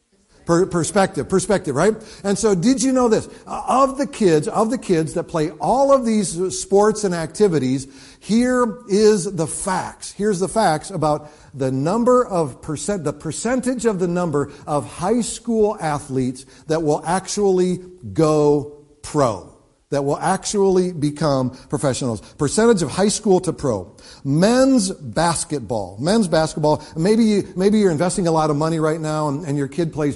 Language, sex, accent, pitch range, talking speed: English, male, American, 145-205 Hz, 160 wpm